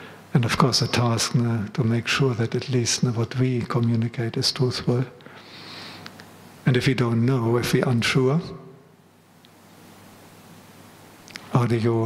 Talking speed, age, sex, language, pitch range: 135 wpm, 50-69, male, English, 120-135 Hz